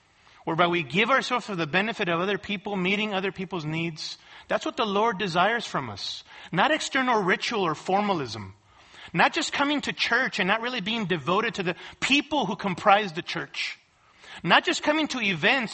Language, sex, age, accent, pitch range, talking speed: English, male, 40-59, American, 200-280 Hz, 185 wpm